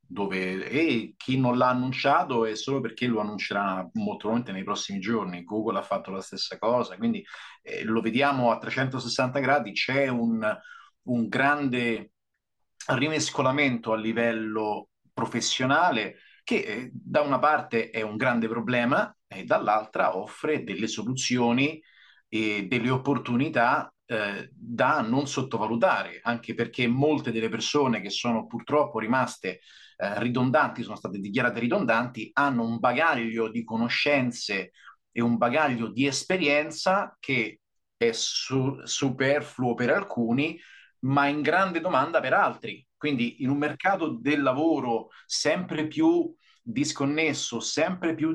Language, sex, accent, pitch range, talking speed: Italian, male, native, 115-145 Hz, 130 wpm